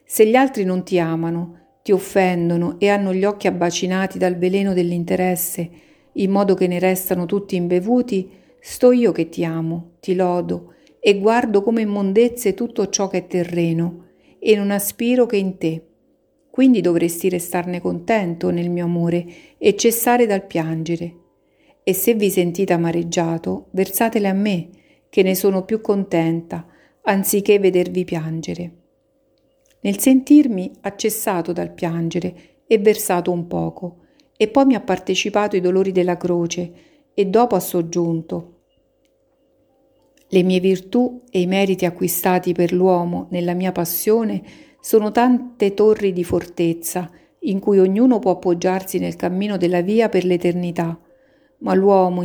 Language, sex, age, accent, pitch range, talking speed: Italian, female, 50-69, native, 175-205 Hz, 140 wpm